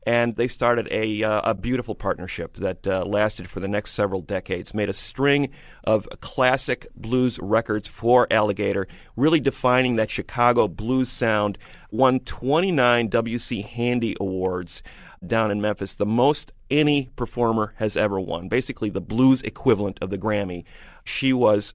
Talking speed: 150 wpm